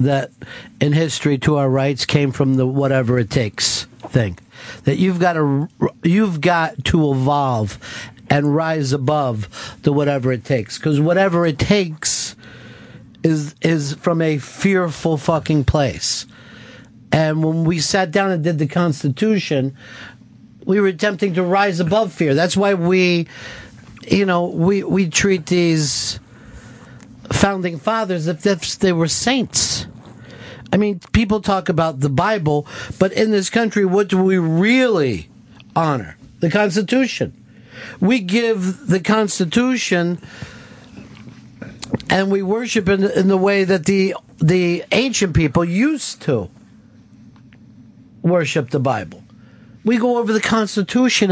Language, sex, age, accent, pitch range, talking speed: English, male, 50-69, American, 140-200 Hz, 135 wpm